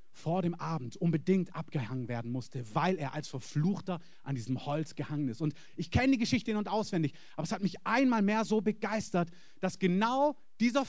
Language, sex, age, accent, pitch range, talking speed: German, male, 30-49, German, 160-220 Hz, 195 wpm